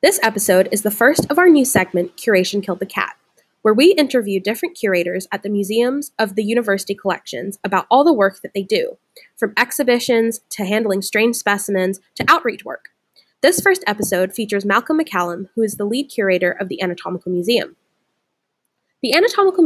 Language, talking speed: English, 175 wpm